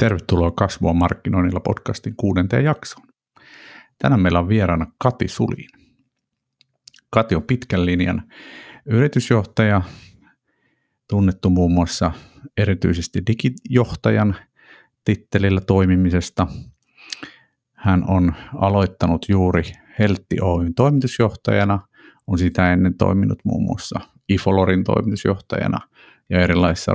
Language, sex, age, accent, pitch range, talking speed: Finnish, male, 50-69, native, 90-115 Hz, 90 wpm